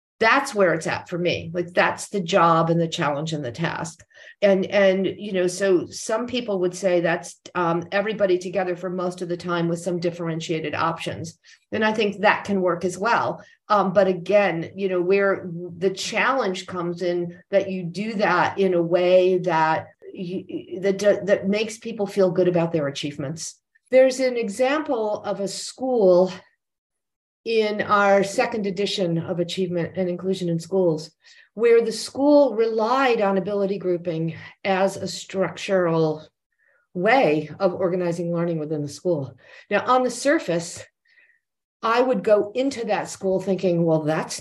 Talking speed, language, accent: 160 wpm, English, American